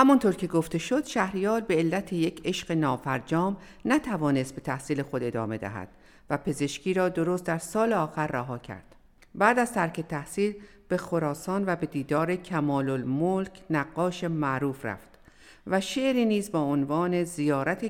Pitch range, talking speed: 145-205 Hz, 150 wpm